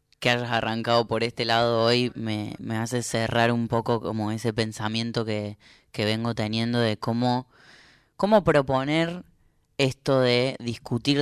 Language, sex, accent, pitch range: Spanish, female, Argentinian, 110-125 Hz